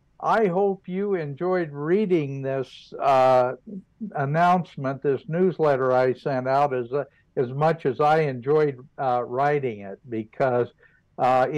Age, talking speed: 60-79, 130 wpm